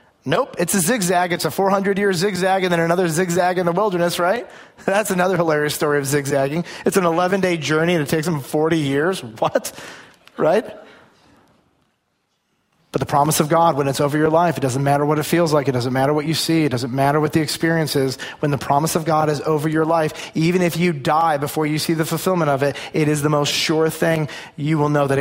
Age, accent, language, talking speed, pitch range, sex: 30-49, American, English, 225 wpm, 140-160 Hz, male